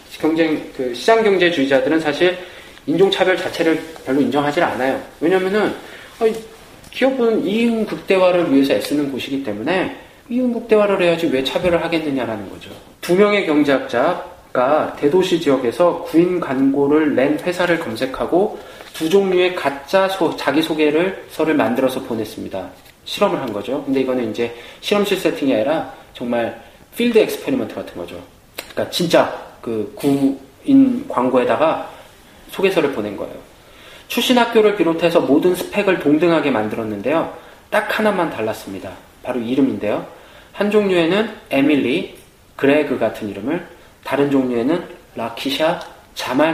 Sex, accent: male, native